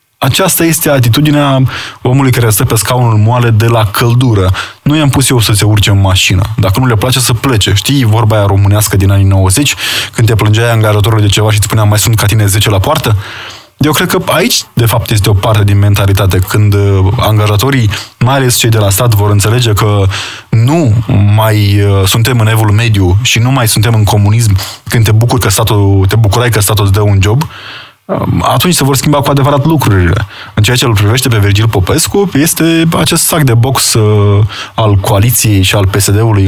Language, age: Romanian, 20-39